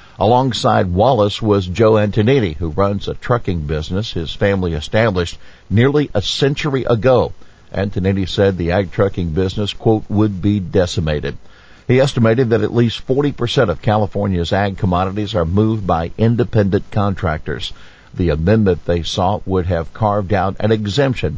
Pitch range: 95-120 Hz